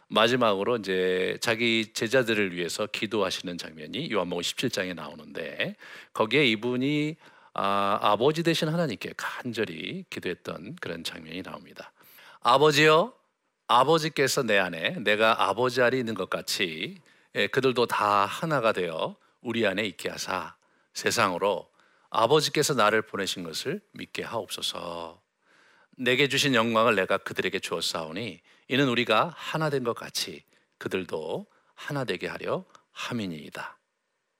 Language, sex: Korean, male